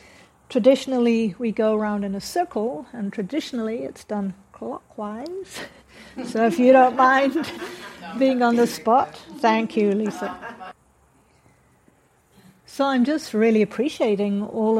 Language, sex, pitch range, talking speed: English, female, 205-240 Hz, 120 wpm